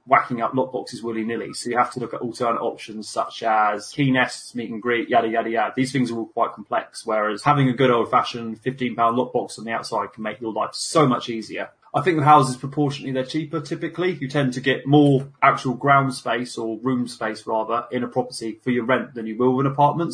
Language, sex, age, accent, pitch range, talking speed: English, male, 20-39, British, 115-135 Hz, 230 wpm